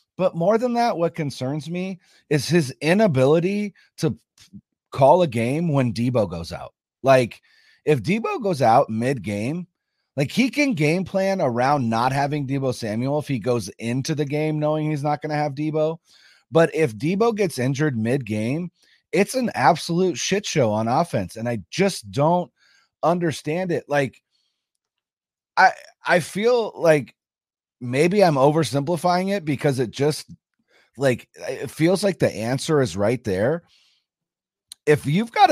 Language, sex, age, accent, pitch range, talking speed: English, male, 30-49, American, 130-180 Hz, 150 wpm